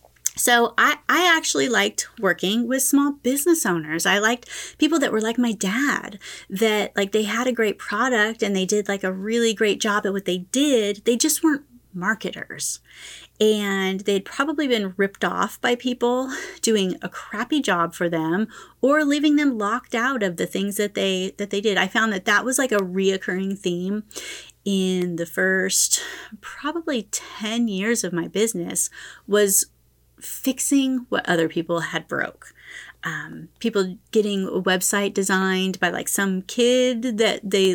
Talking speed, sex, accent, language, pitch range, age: 165 wpm, female, American, English, 190-245 Hz, 30-49